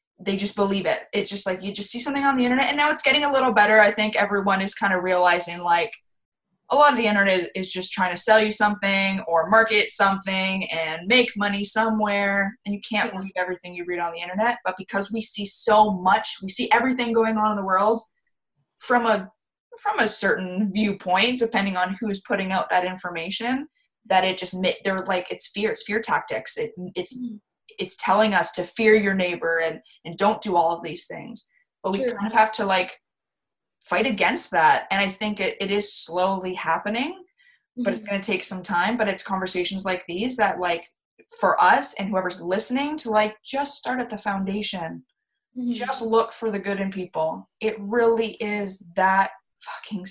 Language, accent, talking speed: English, American, 200 wpm